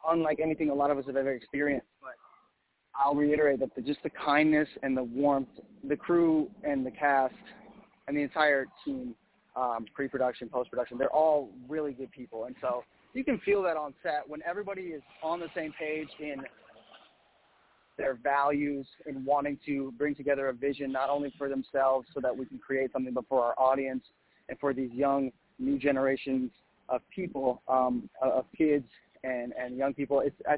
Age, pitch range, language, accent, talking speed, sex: 20-39, 130-155 Hz, English, American, 180 wpm, male